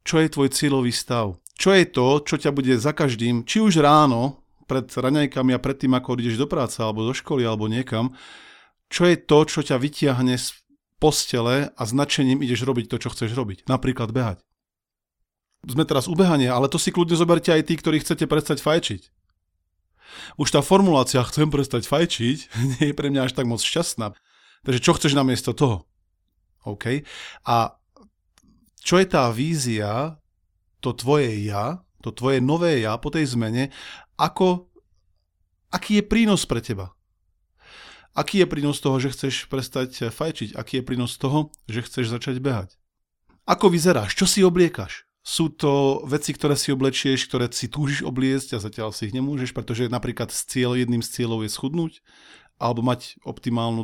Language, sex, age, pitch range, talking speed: Slovak, male, 40-59, 115-150 Hz, 165 wpm